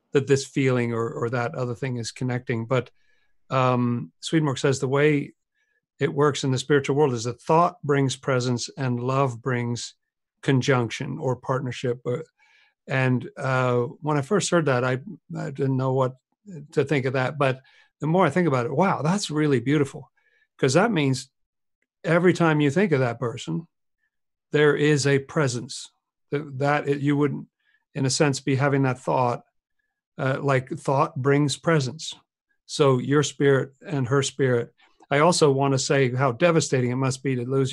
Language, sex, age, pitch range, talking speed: English, male, 50-69, 130-160 Hz, 175 wpm